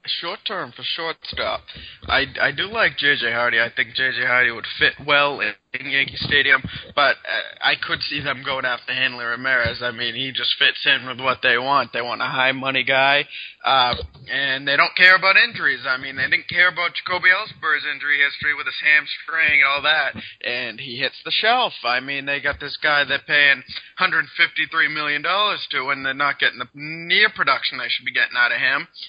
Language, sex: English, male